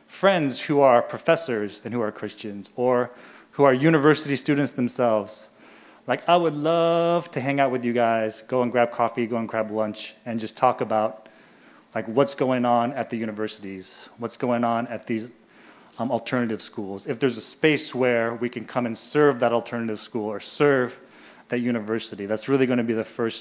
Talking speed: 190 wpm